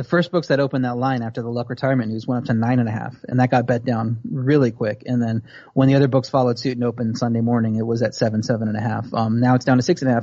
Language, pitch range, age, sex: English, 120-145 Hz, 30-49, male